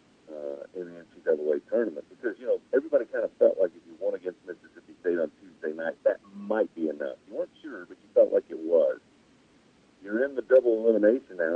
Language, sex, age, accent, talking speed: English, male, 50-69, American, 215 wpm